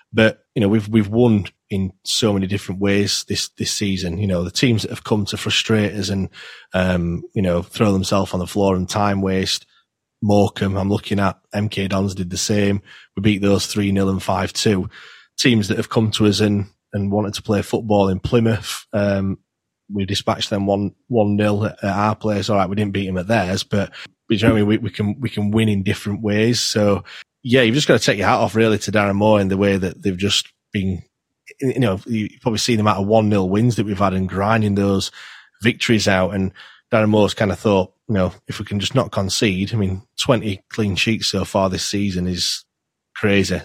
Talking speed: 215 wpm